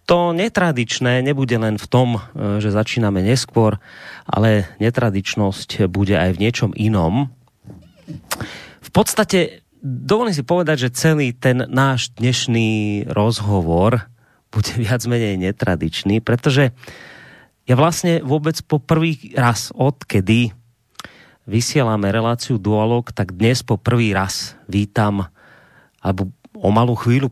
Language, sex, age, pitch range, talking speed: Slovak, male, 30-49, 110-150 Hz, 115 wpm